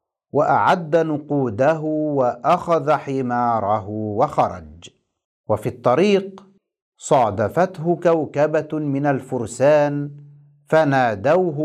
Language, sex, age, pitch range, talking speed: Arabic, male, 50-69, 135-170 Hz, 60 wpm